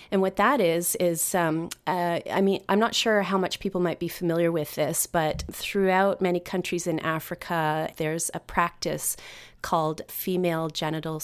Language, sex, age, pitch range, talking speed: English, female, 30-49, 160-180 Hz, 170 wpm